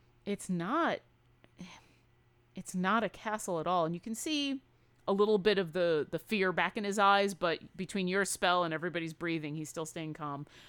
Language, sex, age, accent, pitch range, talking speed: English, female, 30-49, American, 155-200 Hz, 190 wpm